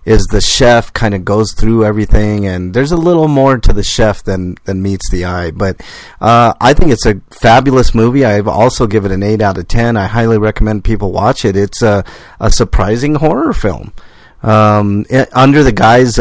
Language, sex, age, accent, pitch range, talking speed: English, male, 40-59, American, 100-120 Hz, 205 wpm